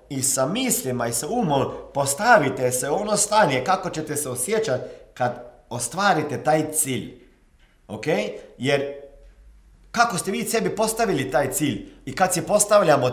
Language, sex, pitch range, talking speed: Croatian, male, 125-185 Hz, 140 wpm